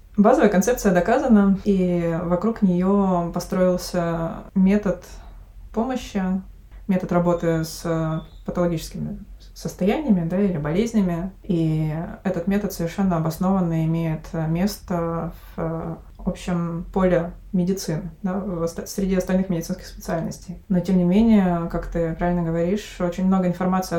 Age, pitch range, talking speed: 20-39, 170-200 Hz, 115 wpm